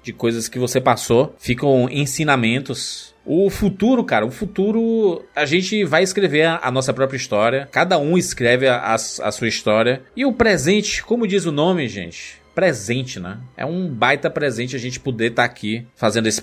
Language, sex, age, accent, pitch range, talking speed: Portuguese, male, 20-39, Brazilian, 115-155 Hz, 175 wpm